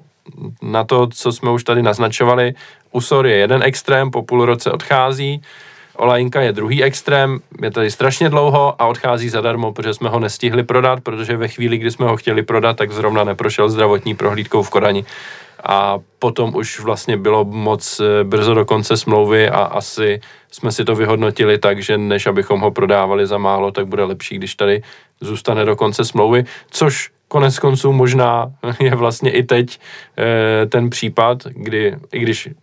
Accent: native